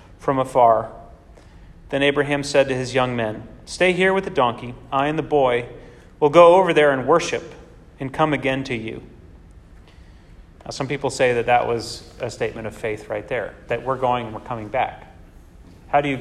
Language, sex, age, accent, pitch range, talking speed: English, male, 30-49, American, 95-140 Hz, 195 wpm